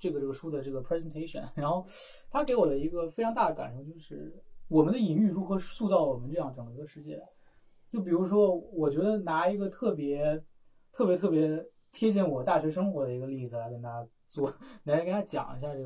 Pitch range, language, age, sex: 135-180 Hz, Chinese, 20-39, male